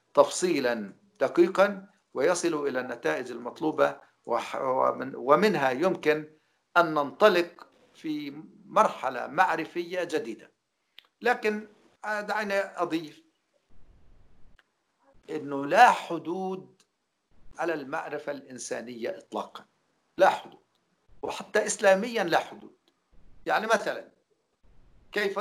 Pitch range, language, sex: 175-230 Hz, English, male